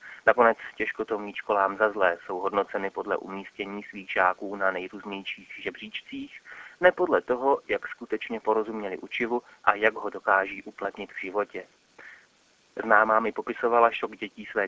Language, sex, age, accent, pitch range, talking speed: Czech, male, 30-49, native, 100-125 Hz, 135 wpm